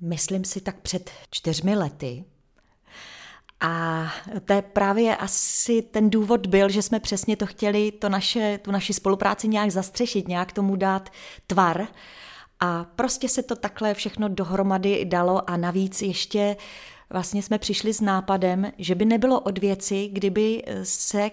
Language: Czech